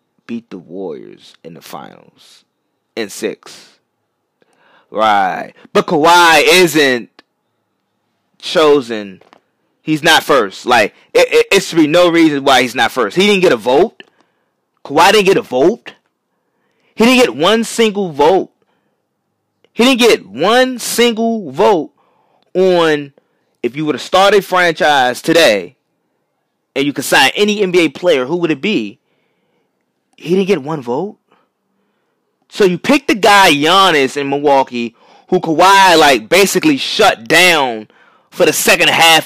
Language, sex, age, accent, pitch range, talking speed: English, male, 20-39, American, 145-210 Hz, 140 wpm